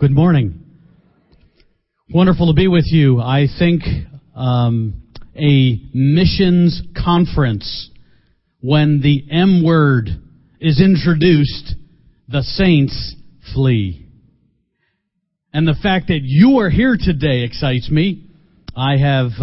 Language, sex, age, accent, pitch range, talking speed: English, male, 50-69, American, 120-160 Hz, 105 wpm